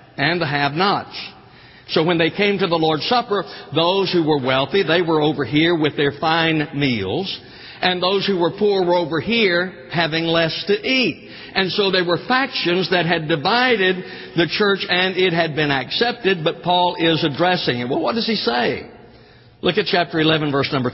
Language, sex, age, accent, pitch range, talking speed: English, male, 60-79, American, 145-190 Hz, 190 wpm